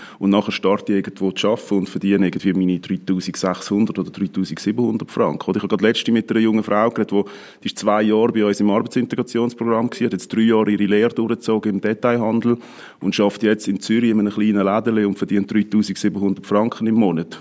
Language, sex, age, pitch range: German, male, 40-59, 95-110 Hz